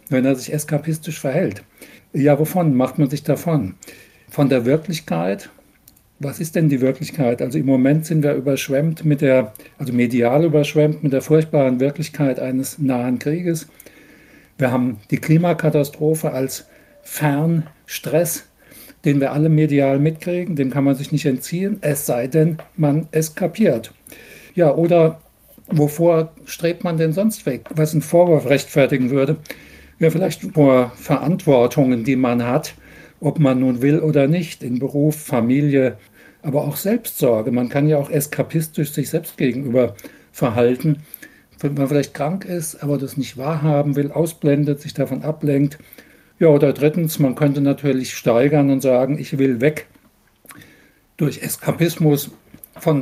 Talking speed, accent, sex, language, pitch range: 145 wpm, German, male, German, 135-160 Hz